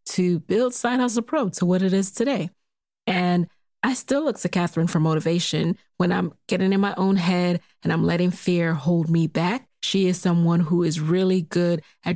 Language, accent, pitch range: English, American, 175-210 Hz